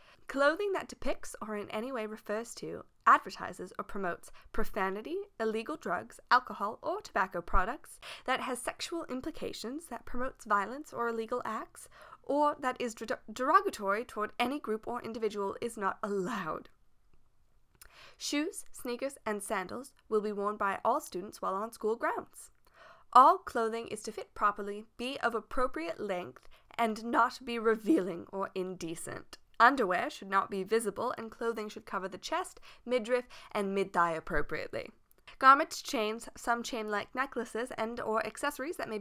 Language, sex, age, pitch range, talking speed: English, female, 10-29, 200-255 Hz, 150 wpm